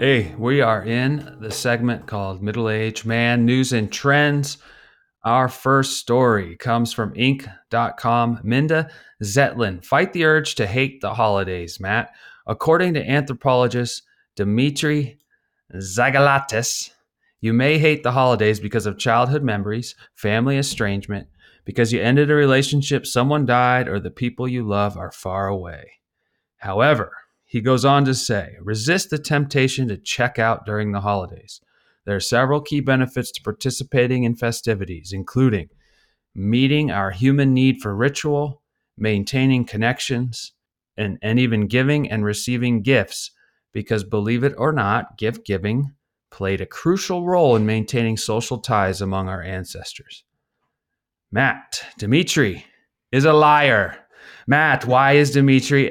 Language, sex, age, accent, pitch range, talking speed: English, male, 30-49, American, 105-140 Hz, 135 wpm